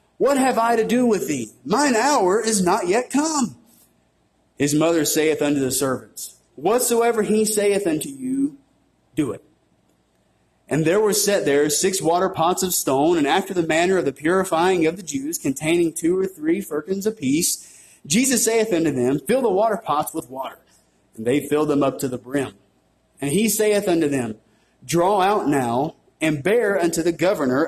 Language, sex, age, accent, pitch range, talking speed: English, male, 30-49, American, 145-225 Hz, 180 wpm